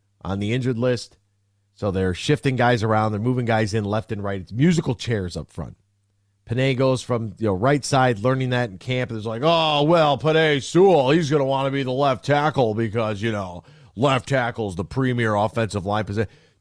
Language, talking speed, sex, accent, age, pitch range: English, 205 wpm, male, American, 40-59, 100-145 Hz